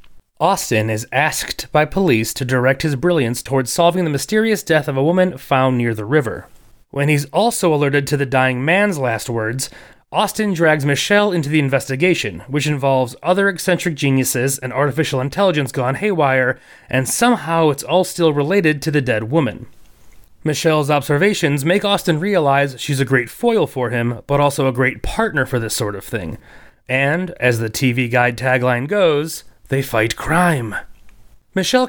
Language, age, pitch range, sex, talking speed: English, 30-49, 130-170 Hz, male, 165 wpm